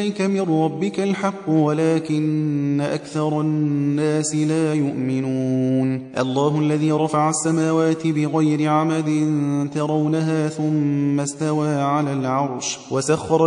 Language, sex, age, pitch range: Persian, male, 30-49, 140-155 Hz